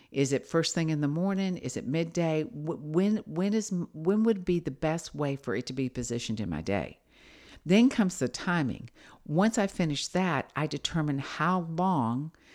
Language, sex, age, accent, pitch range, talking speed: English, female, 50-69, American, 130-165 Hz, 175 wpm